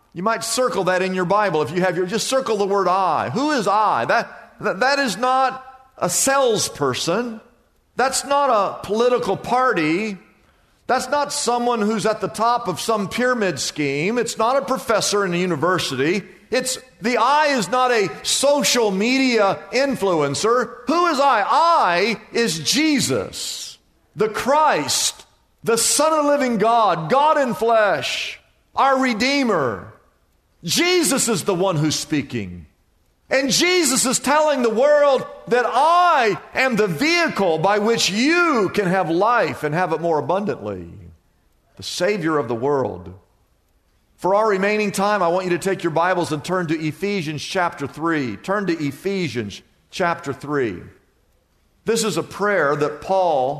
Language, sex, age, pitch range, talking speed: English, male, 50-69, 160-255 Hz, 155 wpm